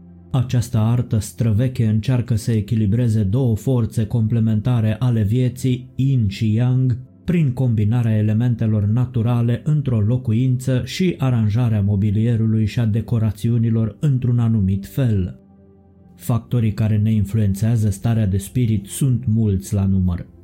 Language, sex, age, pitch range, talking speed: Romanian, male, 20-39, 105-120 Hz, 115 wpm